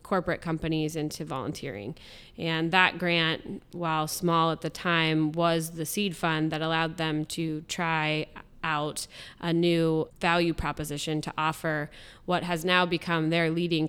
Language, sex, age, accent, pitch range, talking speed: English, female, 20-39, American, 155-175 Hz, 145 wpm